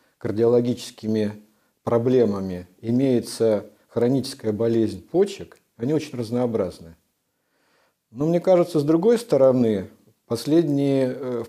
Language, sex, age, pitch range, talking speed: Russian, male, 50-69, 110-150 Hz, 85 wpm